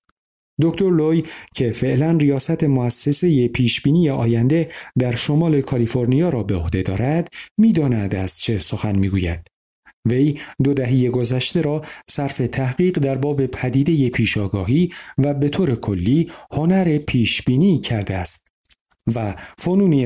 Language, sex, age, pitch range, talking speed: Persian, male, 50-69, 115-155 Hz, 125 wpm